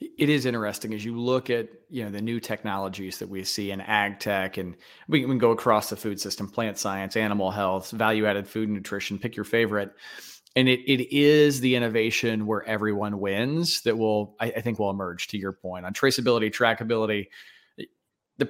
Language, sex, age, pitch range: English, male, 30-49, 110-135 Hz